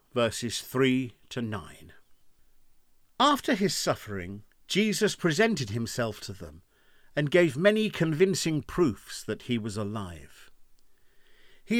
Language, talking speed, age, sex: English, 105 wpm, 50-69, male